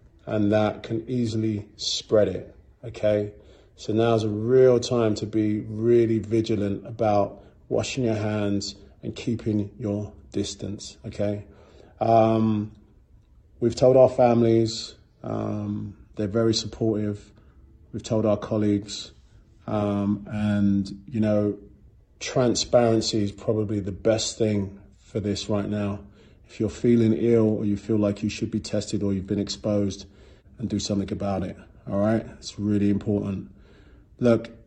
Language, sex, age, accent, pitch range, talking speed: English, male, 30-49, British, 100-110 Hz, 135 wpm